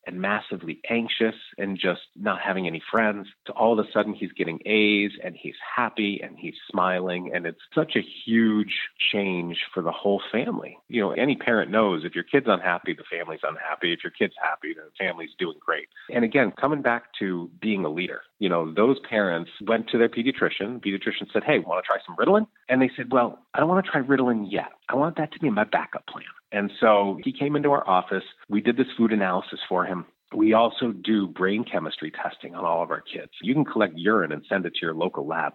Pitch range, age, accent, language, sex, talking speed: 95-125 Hz, 30-49, American, English, male, 225 wpm